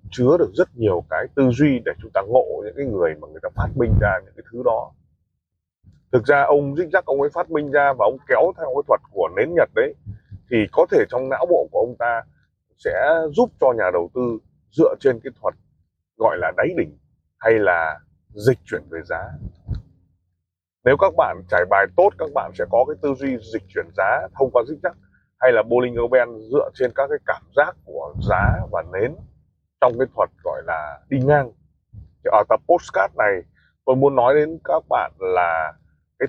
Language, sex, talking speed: Vietnamese, male, 210 wpm